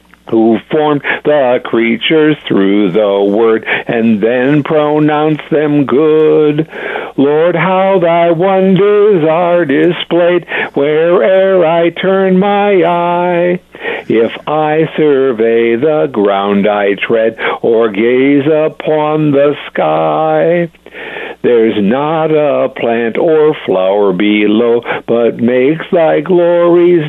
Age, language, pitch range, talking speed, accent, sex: 60-79, English, 115-170 Hz, 100 wpm, American, male